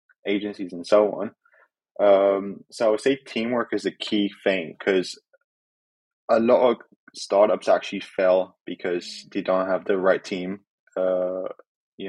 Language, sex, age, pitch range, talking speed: English, male, 20-39, 95-105 Hz, 150 wpm